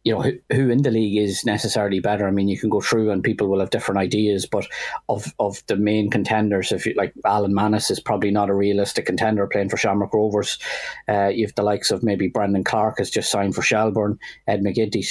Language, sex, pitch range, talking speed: English, male, 100-110 Hz, 230 wpm